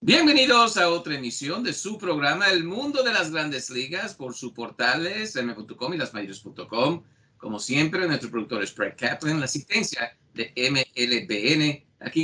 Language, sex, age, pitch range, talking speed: English, male, 50-69, 105-130 Hz, 150 wpm